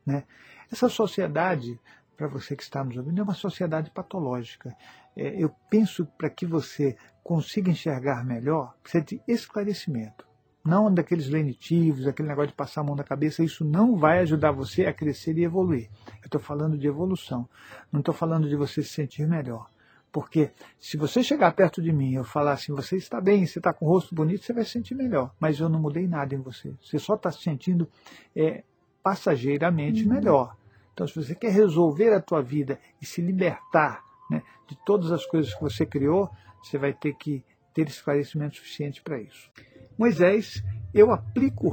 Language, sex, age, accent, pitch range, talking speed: Portuguese, male, 50-69, Brazilian, 140-180 Hz, 185 wpm